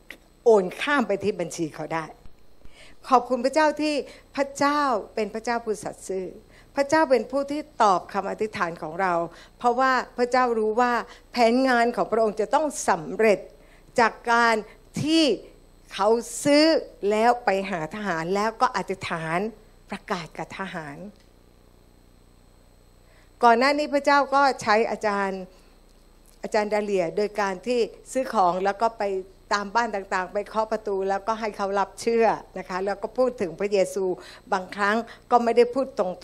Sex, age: female, 60-79